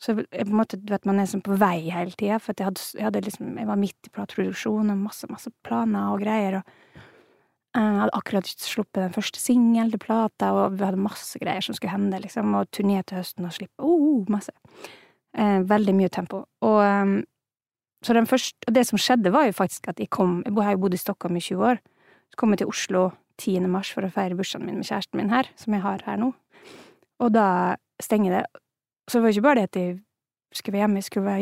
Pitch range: 195-235 Hz